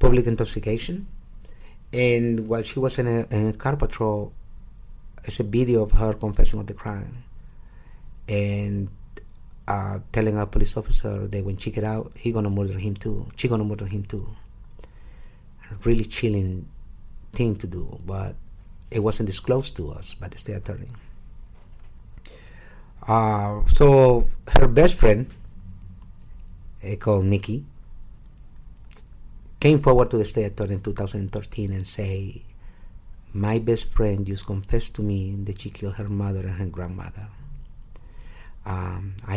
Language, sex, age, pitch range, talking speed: English, male, 50-69, 95-115 Hz, 140 wpm